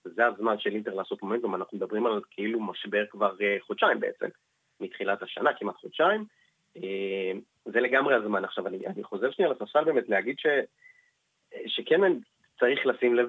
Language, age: Hebrew, 30-49